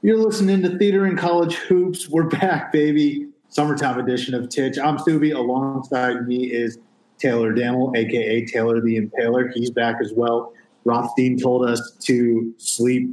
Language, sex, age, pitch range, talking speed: English, male, 30-49, 115-145 Hz, 155 wpm